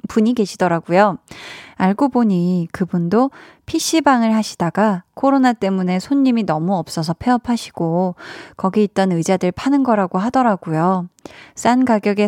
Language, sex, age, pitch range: Korean, female, 20-39, 180-245 Hz